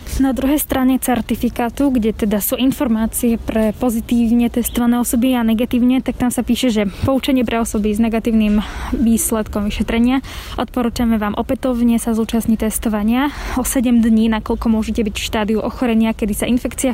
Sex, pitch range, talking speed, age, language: female, 230-255 Hz, 155 wpm, 10-29, Slovak